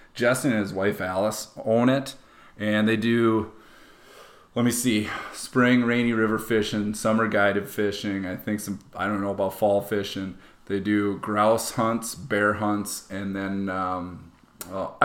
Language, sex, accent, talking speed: English, male, American, 155 wpm